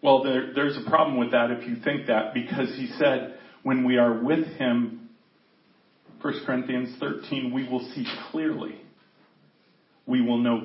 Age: 40-59